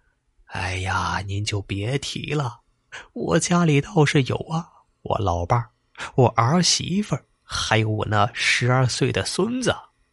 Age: 20-39